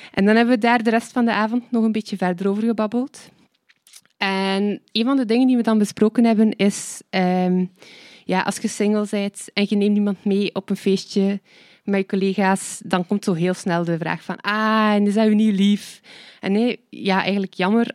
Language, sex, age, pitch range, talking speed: Dutch, female, 20-39, 180-210 Hz, 215 wpm